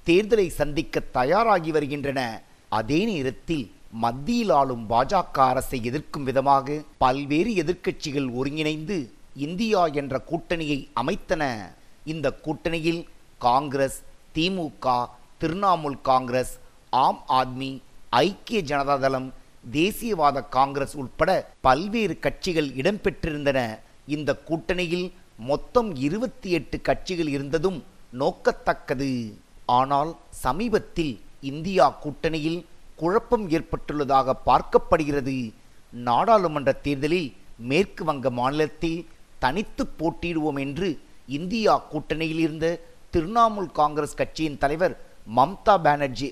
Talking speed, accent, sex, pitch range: 85 wpm, native, male, 135-170 Hz